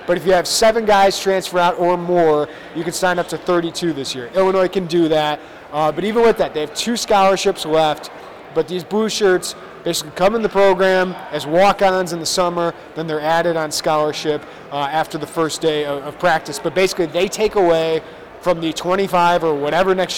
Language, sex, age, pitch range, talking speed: English, male, 30-49, 160-195 Hz, 210 wpm